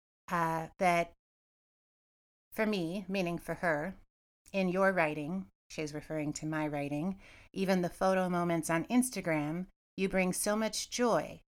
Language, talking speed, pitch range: English, 135 wpm, 155-190 Hz